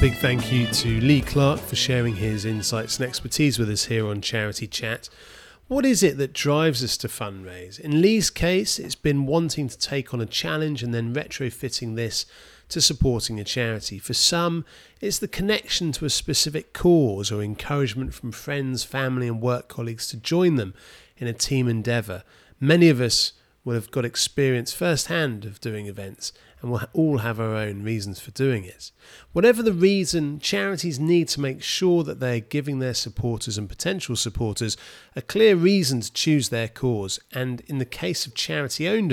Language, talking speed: English, 180 wpm